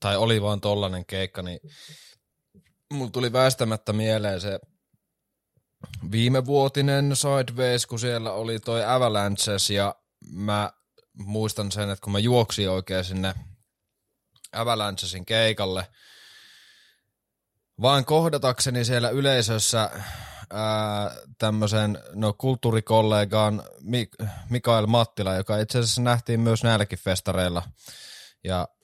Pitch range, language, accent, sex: 95-115 Hz, Finnish, native, male